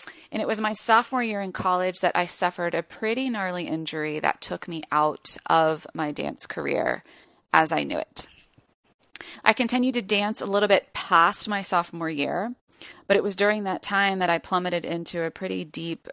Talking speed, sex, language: 190 wpm, female, English